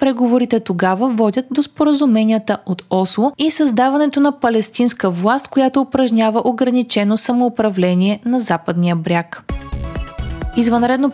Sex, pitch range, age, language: female, 190-260 Hz, 20-39, Bulgarian